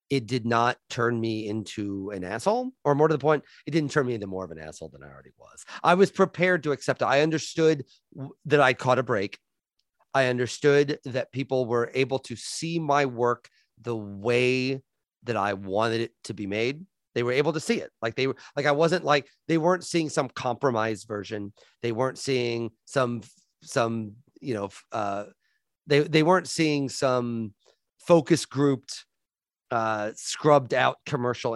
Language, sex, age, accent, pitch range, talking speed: English, male, 40-59, American, 115-150 Hz, 185 wpm